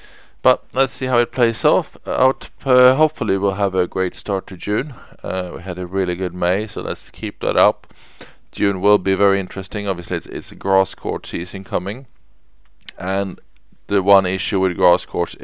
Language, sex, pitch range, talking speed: English, male, 90-105 Hz, 190 wpm